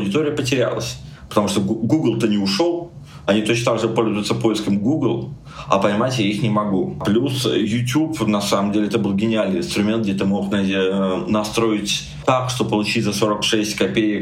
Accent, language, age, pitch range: native, Russian, 20-39, 100-115 Hz